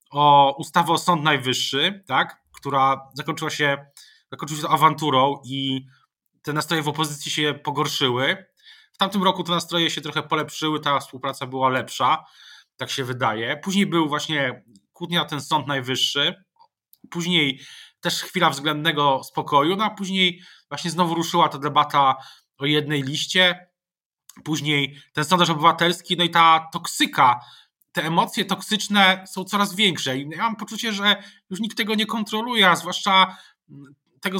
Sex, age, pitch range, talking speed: male, 20-39, 145-185 Hz, 145 wpm